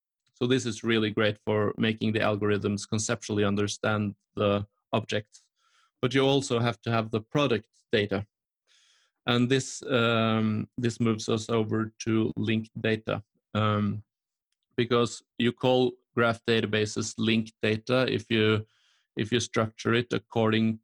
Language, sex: English, male